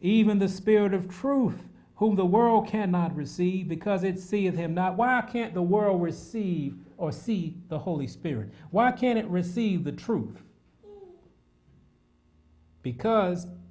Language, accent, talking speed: English, American, 140 wpm